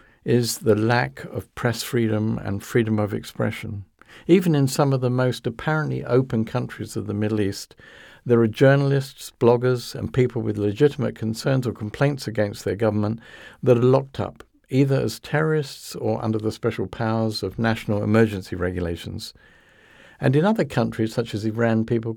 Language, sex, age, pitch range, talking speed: English, male, 50-69, 110-130 Hz, 165 wpm